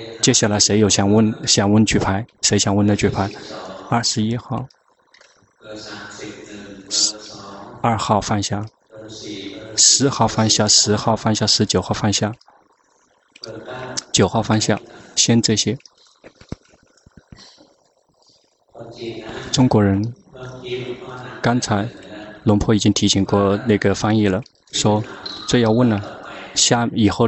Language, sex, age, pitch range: Chinese, male, 20-39, 105-115 Hz